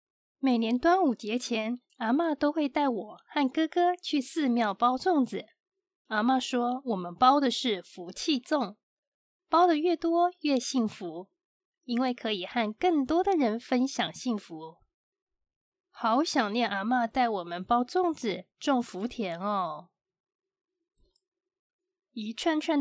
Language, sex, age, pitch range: Chinese, female, 20-39, 225-335 Hz